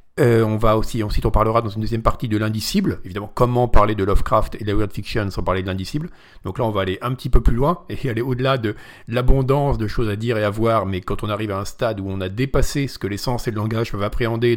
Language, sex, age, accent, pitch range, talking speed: French, male, 40-59, French, 100-130 Hz, 285 wpm